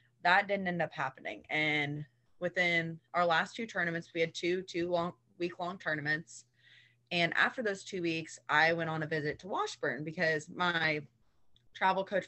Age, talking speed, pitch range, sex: 20-39, 170 wpm, 150-175 Hz, female